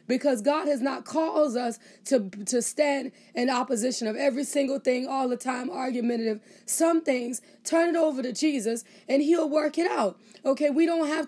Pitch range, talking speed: 260-310 Hz, 185 wpm